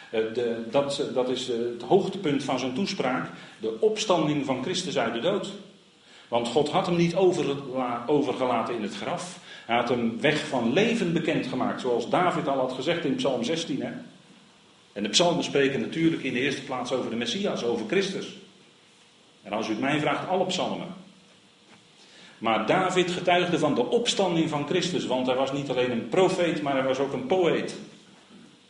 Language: Dutch